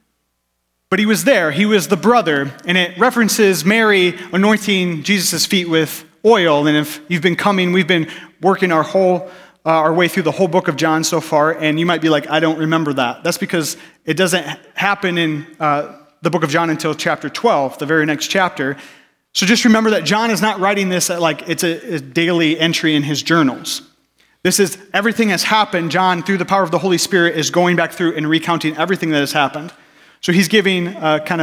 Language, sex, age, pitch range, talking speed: English, male, 30-49, 145-185 Hz, 215 wpm